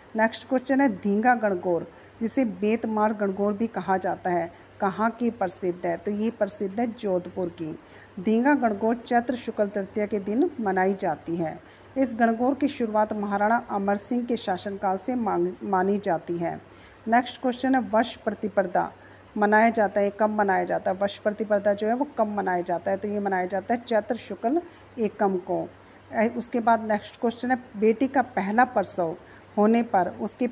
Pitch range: 195-230 Hz